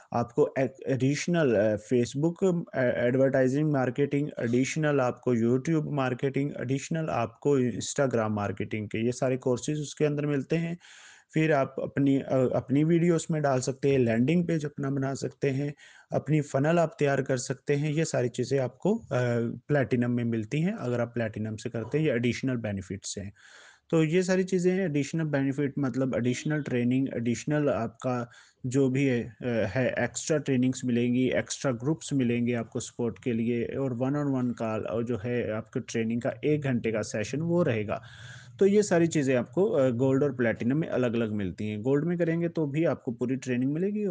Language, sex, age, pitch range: Hindi, male, 30-49, 120-150 Hz